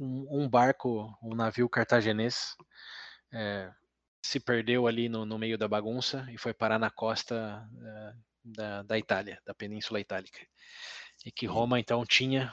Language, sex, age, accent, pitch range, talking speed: Portuguese, male, 20-39, Brazilian, 110-120 Hz, 150 wpm